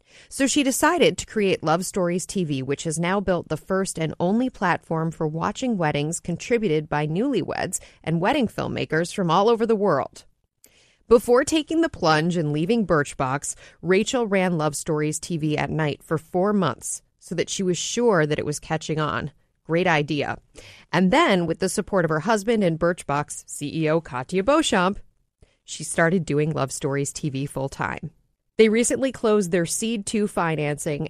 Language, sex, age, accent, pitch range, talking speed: English, female, 30-49, American, 155-200 Hz, 170 wpm